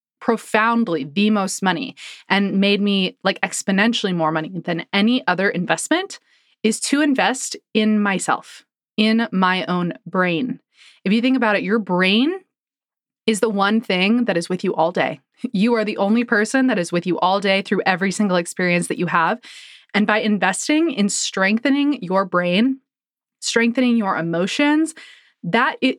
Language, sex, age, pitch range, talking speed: English, female, 20-39, 185-235 Hz, 165 wpm